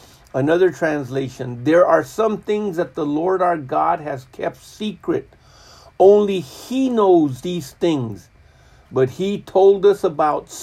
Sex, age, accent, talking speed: male, 50-69, American, 135 wpm